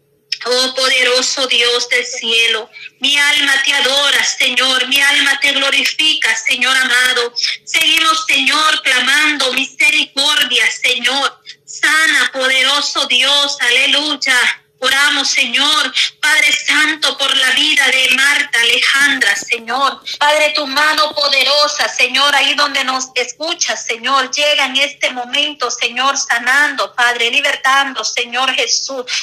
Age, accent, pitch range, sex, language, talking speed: 30-49, American, 260-290 Hz, female, Spanish, 115 wpm